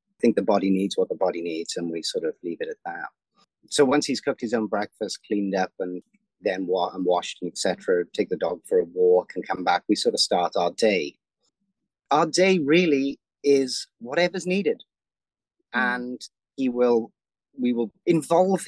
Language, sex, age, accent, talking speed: English, male, 30-49, British, 190 wpm